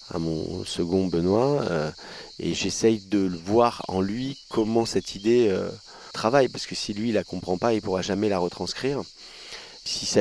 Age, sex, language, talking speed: 30-49, male, French, 180 wpm